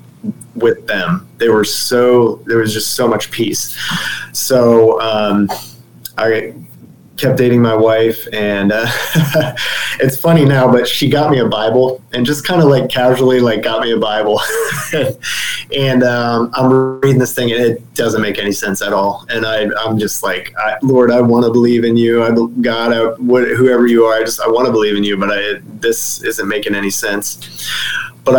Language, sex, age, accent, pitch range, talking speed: English, male, 20-39, American, 105-125 Hz, 185 wpm